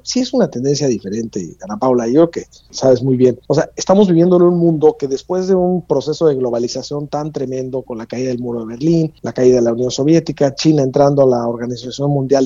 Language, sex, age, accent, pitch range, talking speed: Spanish, male, 40-59, Mexican, 135-170 Hz, 230 wpm